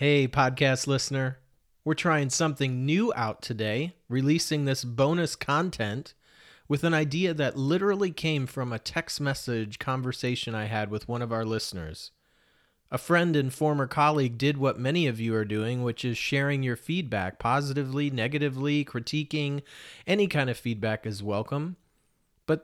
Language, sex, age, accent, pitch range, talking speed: English, male, 30-49, American, 130-160 Hz, 155 wpm